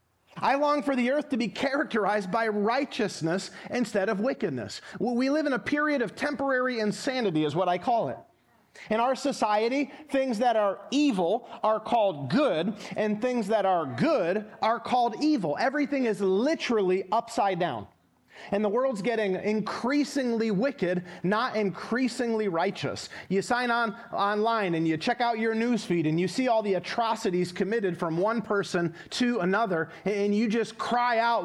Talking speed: 160 wpm